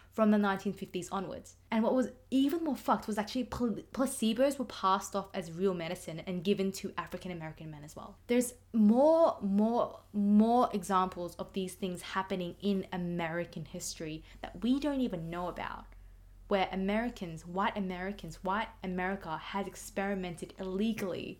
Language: English